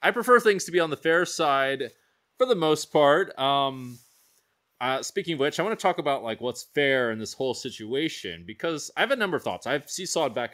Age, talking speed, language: 20-39, 230 wpm, English